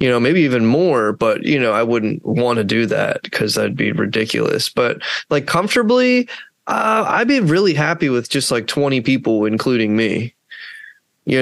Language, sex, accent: English, male, American